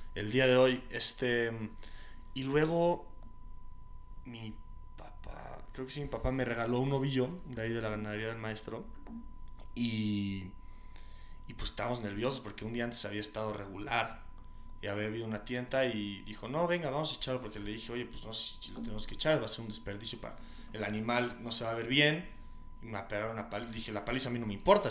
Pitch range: 105-125 Hz